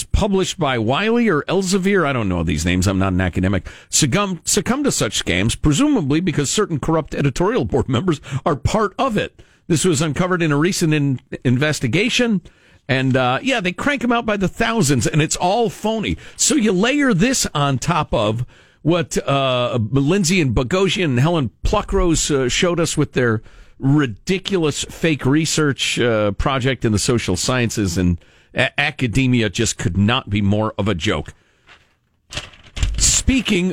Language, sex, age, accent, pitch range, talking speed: English, male, 50-69, American, 115-180 Hz, 165 wpm